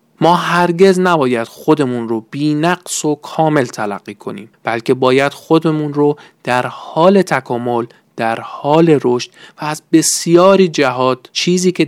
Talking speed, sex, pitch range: 130 wpm, male, 125-175 Hz